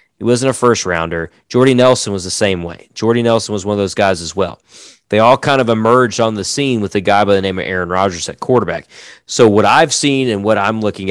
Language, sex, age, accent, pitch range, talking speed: English, male, 30-49, American, 95-115 Hz, 255 wpm